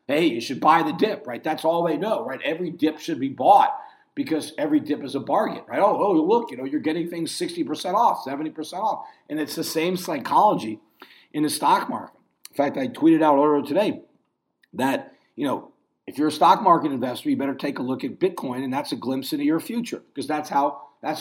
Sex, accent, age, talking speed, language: male, American, 50-69, 225 wpm, English